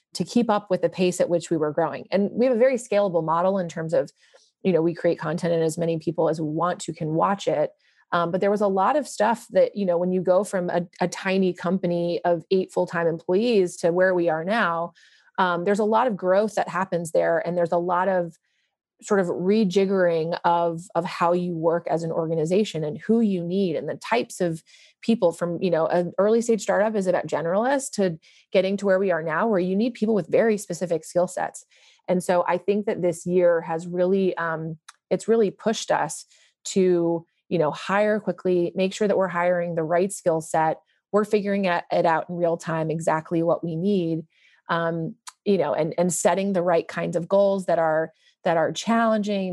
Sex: female